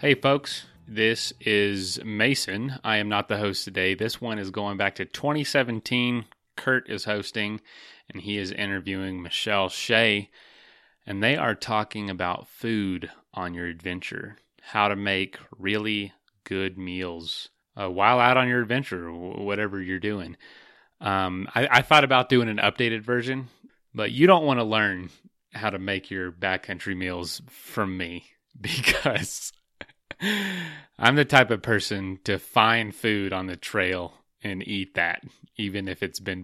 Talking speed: 150 wpm